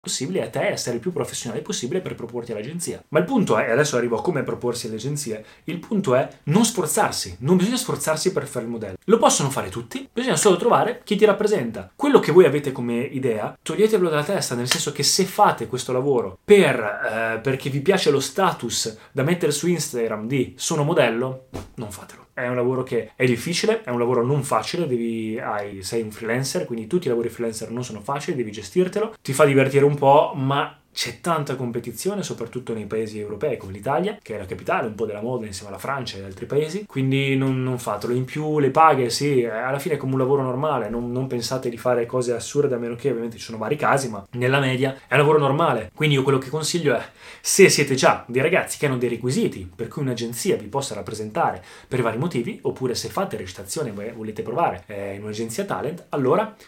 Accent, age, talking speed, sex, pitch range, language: native, 20-39, 215 wpm, male, 115-155 Hz, Italian